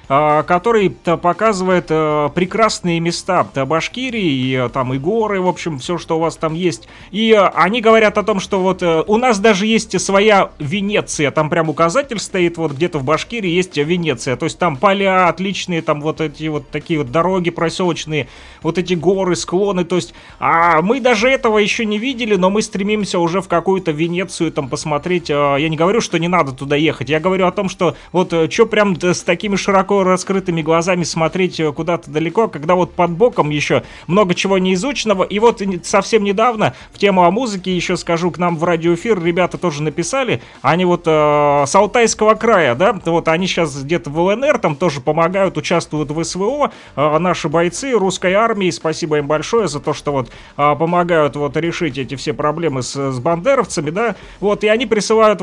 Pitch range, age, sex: 160-200 Hz, 30-49, male